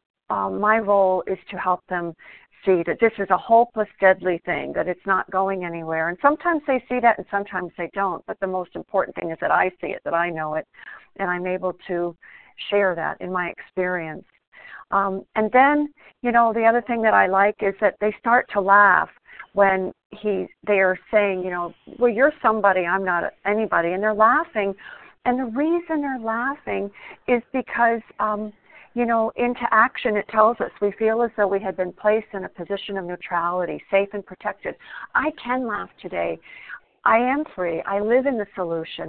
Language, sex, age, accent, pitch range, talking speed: English, female, 50-69, American, 185-235 Hz, 195 wpm